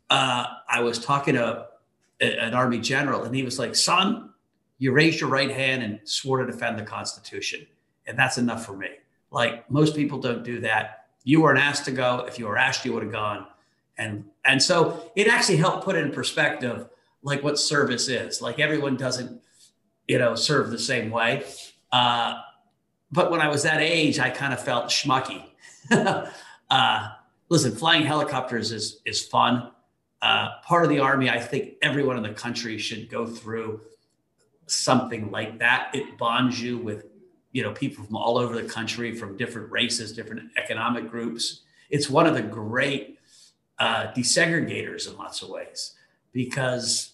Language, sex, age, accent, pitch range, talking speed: English, male, 40-59, American, 115-140 Hz, 175 wpm